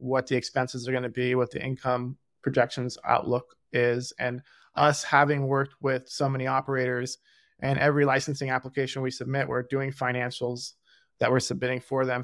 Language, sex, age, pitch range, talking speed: English, male, 20-39, 130-150 Hz, 165 wpm